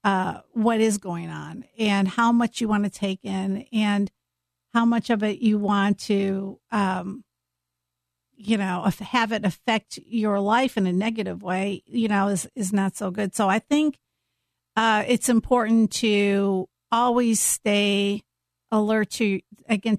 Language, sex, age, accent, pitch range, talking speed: English, female, 50-69, American, 195-225 Hz, 155 wpm